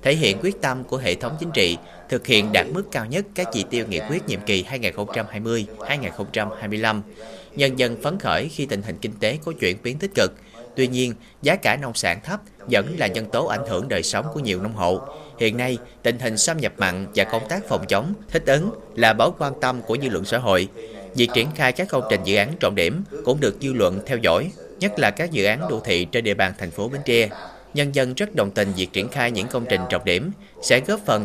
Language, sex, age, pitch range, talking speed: Vietnamese, male, 30-49, 105-135 Hz, 240 wpm